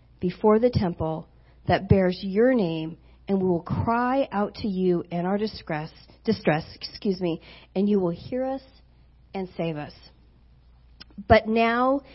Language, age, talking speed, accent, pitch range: English, 40-59, 150 wpm, American, 175-220 Hz